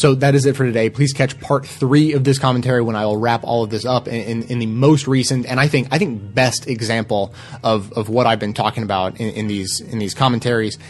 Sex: male